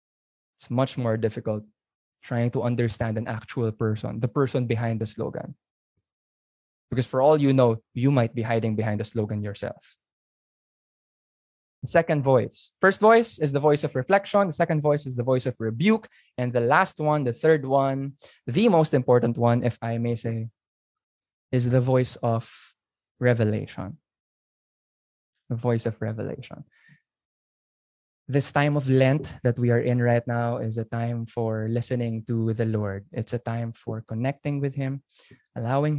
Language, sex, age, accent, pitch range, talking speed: English, male, 20-39, Filipino, 115-140 Hz, 160 wpm